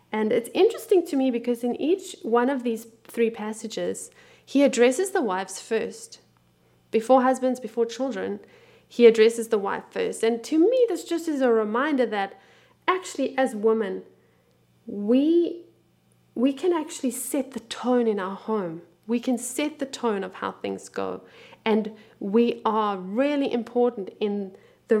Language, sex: English, female